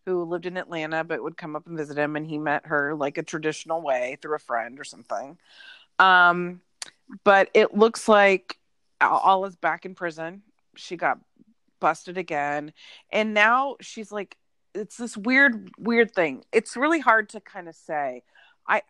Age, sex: 30-49, female